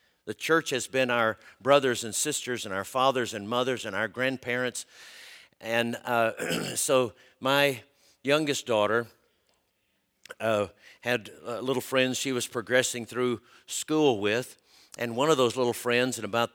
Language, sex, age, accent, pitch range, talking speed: English, male, 50-69, American, 110-130 Hz, 150 wpm